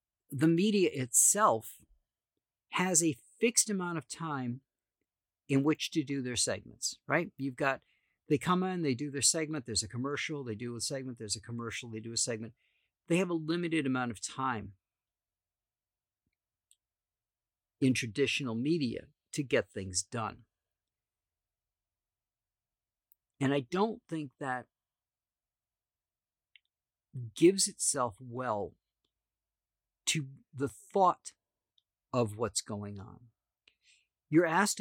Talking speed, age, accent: 120 wpm, 50-69, American